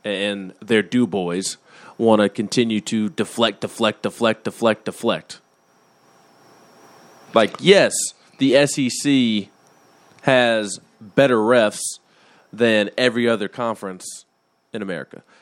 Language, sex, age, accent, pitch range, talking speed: English, male, 20-39, American, 120-170 Hz, 95 wpm